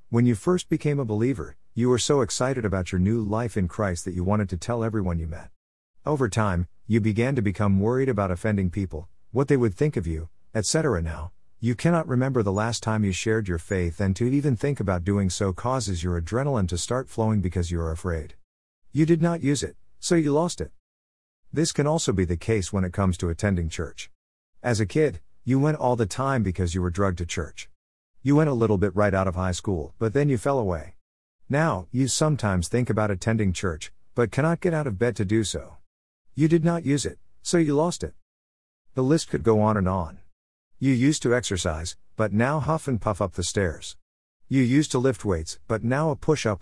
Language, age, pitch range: English, 50-69, 90-130 Hz